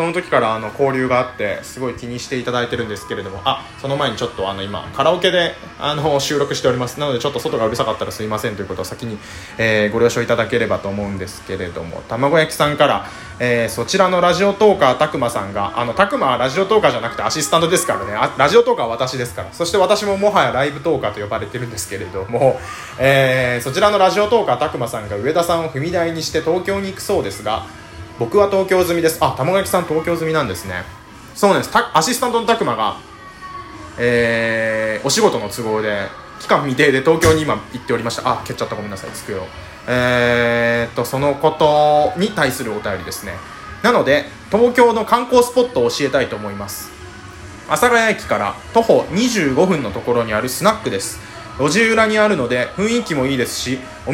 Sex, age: male, 20-39